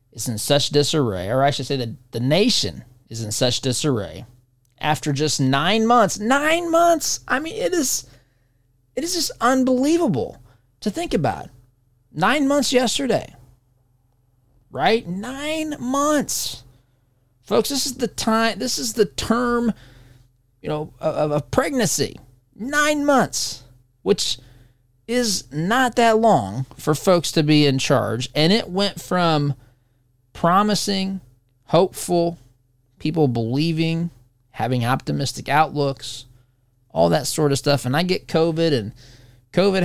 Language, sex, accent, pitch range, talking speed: English, male, American, 125-200 Hz, 130 wpm